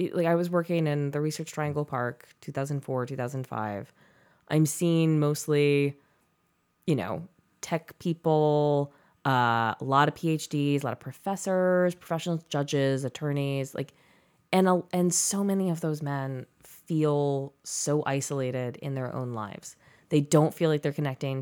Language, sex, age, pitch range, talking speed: English, female, 20-39, 135-160 Hz, 145 wpm